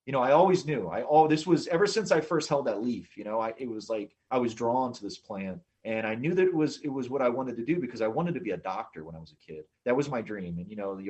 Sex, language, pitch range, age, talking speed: male, English, 110-170 Hz, 30-49, 335 wpm